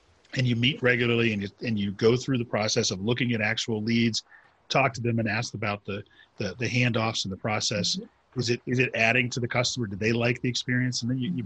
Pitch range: 105-125 Hz